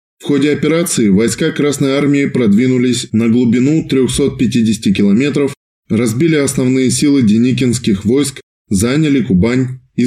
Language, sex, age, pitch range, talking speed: Russian, male, 20-39, 115-145 Hz, 115 wpm